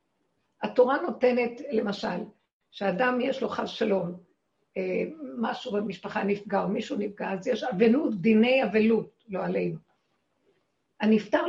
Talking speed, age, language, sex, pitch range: 115 wpm, 50-69, Hebrew, female, 200-250 Hz